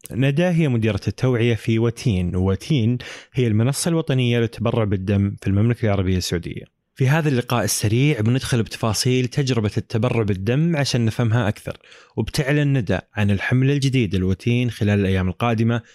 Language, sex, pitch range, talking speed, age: Arabic, male, 105-135 Hz, 140 wpm, 20-39